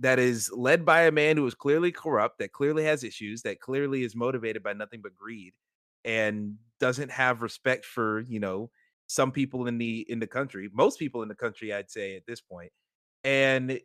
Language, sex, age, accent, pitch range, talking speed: English, male, 30-49, American, 110-145 Hz, 205 wpm